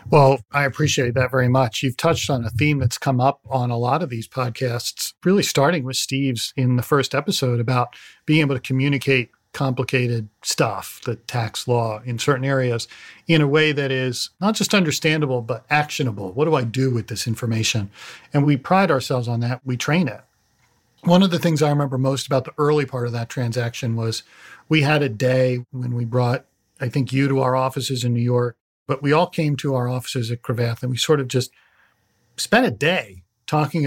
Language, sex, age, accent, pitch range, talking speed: English, male, 40-59, American, 120-150 Hz, 205 wpm